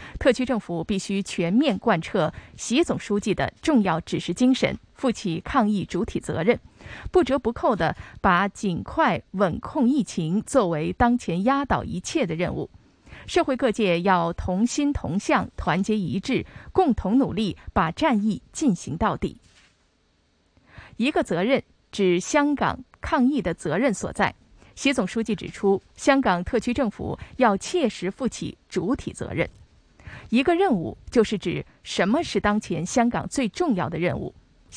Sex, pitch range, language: female, 185-265 Hz, Chinese